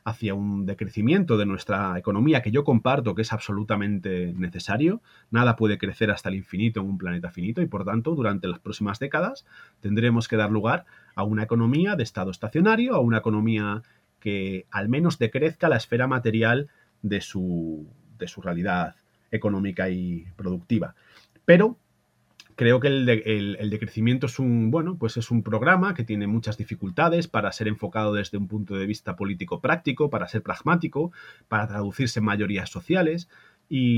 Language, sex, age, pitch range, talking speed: Spanish, male, 30-49, 105-140 Hz, 170 wpm